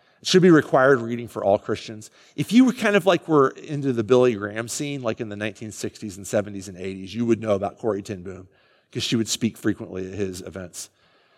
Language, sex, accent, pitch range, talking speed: English, male, American, 105-135 Hz, 225 wpm